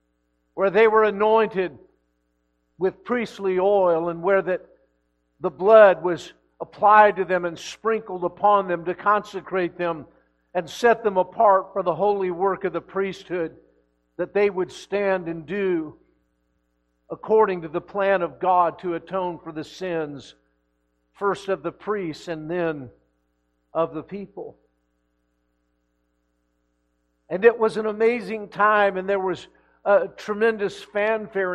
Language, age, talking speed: English, 50-69, 135 wpm